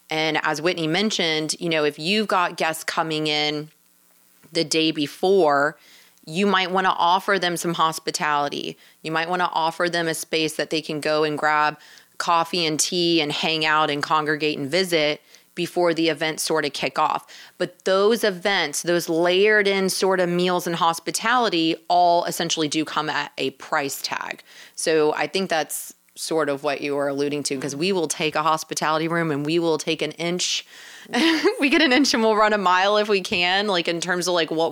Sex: female